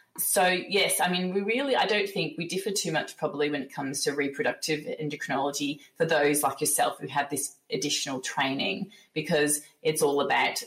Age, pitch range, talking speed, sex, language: 20-39, 150-185 Hz, 185 wpm, female, English